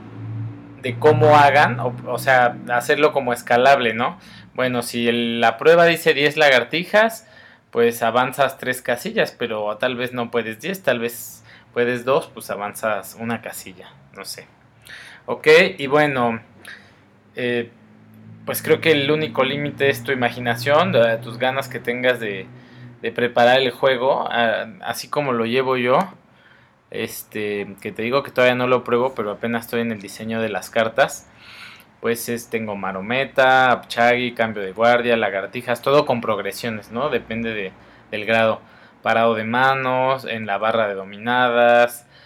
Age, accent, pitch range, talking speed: 20-39, Mexican, 110-125 Hz, 155 wpm